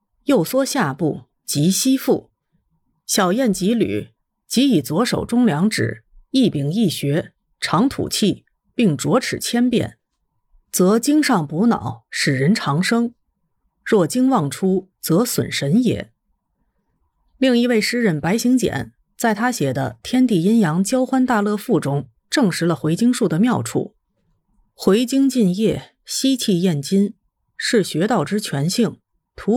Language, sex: Chinese, female